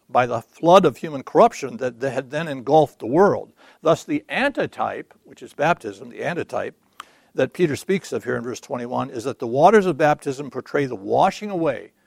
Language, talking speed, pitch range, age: English, 190 wpm, 145-190 Hz, 60-79